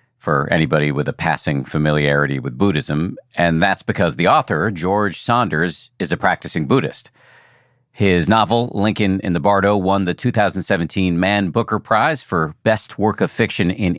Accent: American